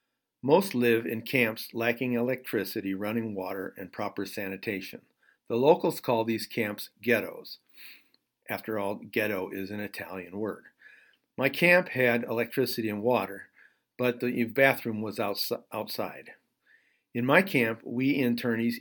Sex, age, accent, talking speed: male, 50-69, American, 130 wpm